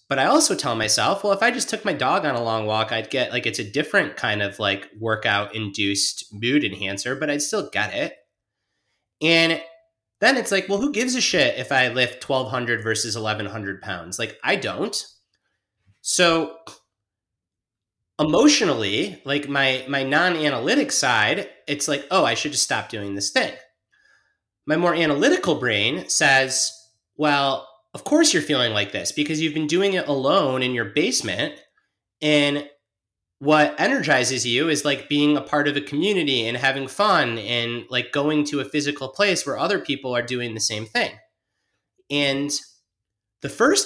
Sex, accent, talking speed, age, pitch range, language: male, American, 170 wpm, 30-49, 110-150 Hz, English